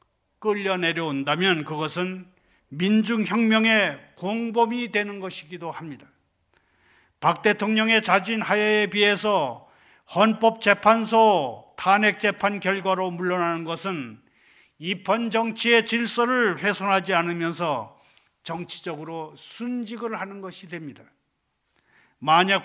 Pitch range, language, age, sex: 165-210 Hz, Korean, 40-59, male